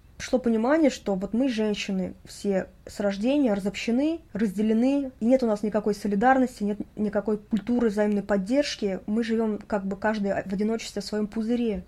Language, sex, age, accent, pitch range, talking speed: Russian, female, 20-39, native, 200-230 Hz, 160 wpm